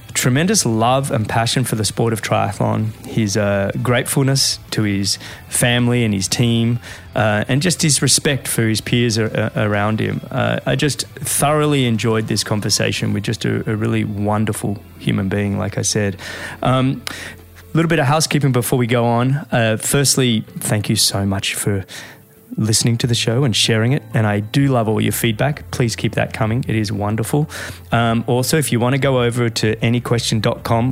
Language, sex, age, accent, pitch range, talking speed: English, male, 20-39, Australian, 105-130 Hz, 185 wpm